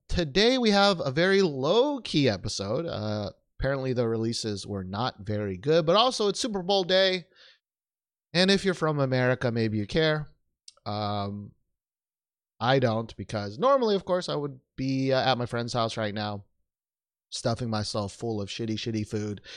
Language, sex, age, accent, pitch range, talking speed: English, male, 30-49, American, 105-155 Hz, 165 wpm